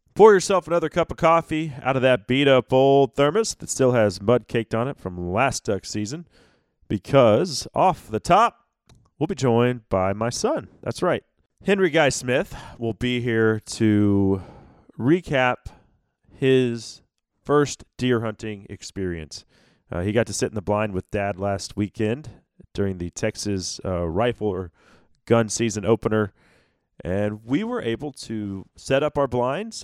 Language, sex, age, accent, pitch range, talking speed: English, male, 30-49, American, 95-130 Hz, 155 wpm